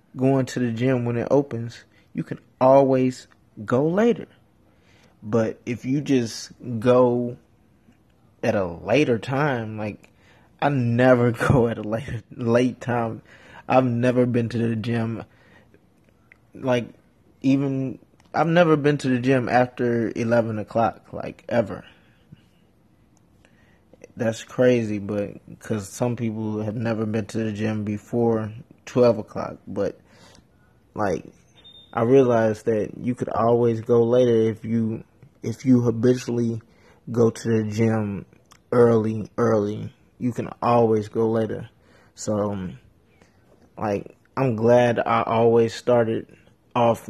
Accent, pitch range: American, 110-125 Hz